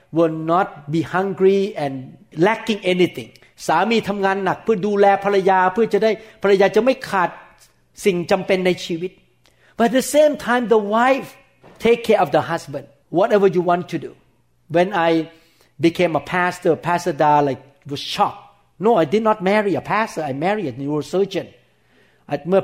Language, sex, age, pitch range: Thai, male, 60-79, 145-195 Hz